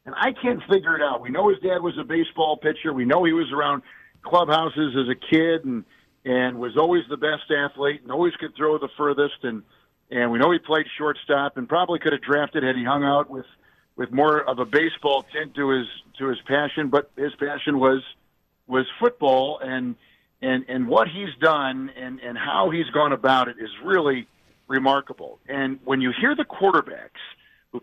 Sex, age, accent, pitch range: male, 50-69, American, 130-155 Hz